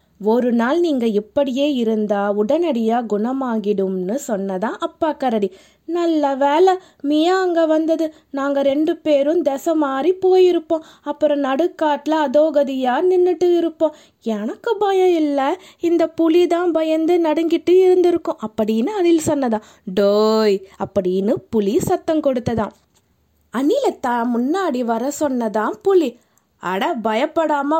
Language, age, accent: Tamil, 20-39, native